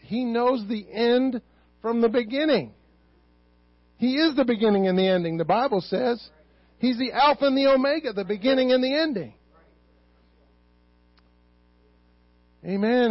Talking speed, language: 135 wpm, English